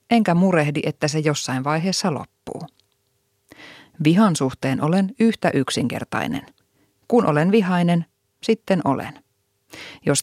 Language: Finnish